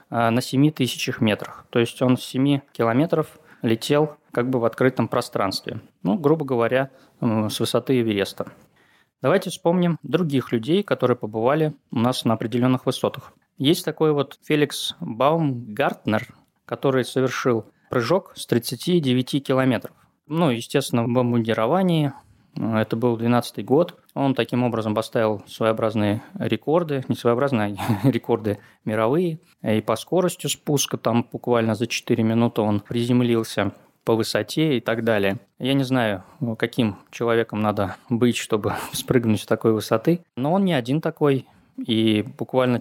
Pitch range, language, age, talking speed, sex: 115-140 Hz, Russian, 20-39, 140 wpm, male